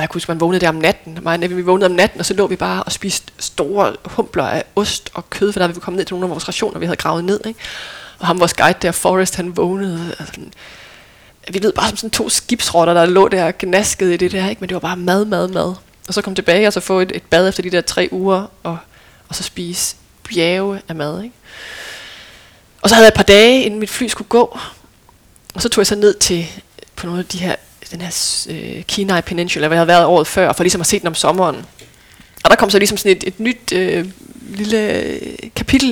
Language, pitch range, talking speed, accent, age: Danish, 180-215 Hz, 245 wpm, native, 20-39